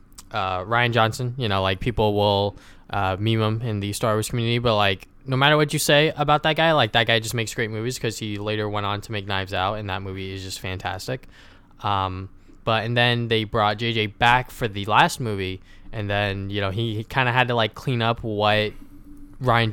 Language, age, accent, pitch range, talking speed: English, 10-29, American, 100-120 Hz, 225 wpm